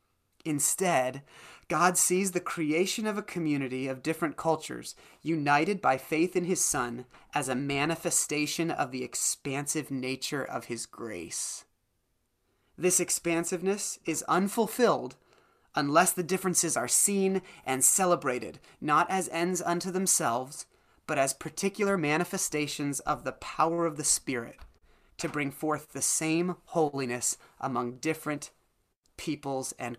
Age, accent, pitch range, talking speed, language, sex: 30-49, American, 140-180 Hz, 125 wpm, English, male